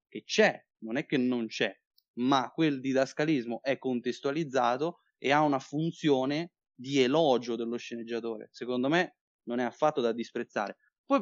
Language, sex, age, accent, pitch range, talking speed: Italian, male, 20-39, native, 120-150 Hz, 150 wpm